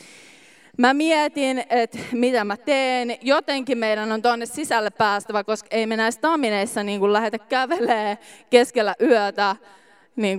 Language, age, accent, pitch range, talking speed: Finnish, 20-39, native, 200-245 Hz, 135 wpm